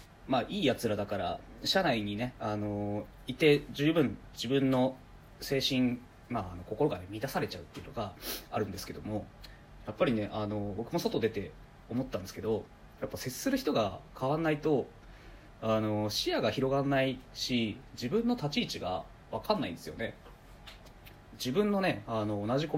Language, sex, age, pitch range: Japanese, male, 20-39, 100-130 Hz